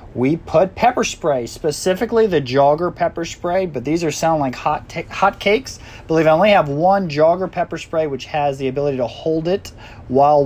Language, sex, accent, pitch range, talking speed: English, male, American, 130-180 Hz, 200 wpm